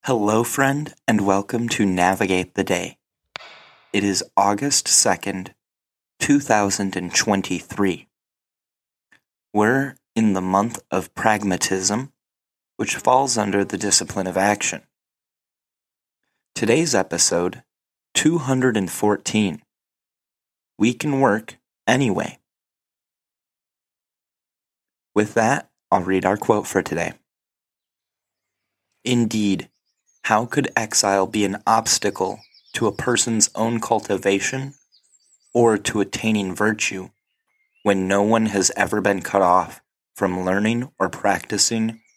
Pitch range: 95-115 Hz